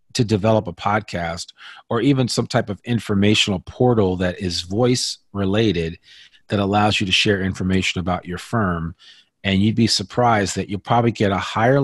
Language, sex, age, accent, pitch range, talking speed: English, male, 40-59, American, 95-120 Hz, 170 wpm